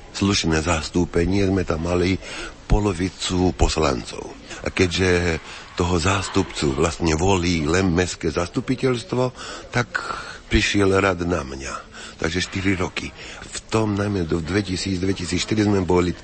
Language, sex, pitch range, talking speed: Slovak, male, 85-100 Hz, 115 wpm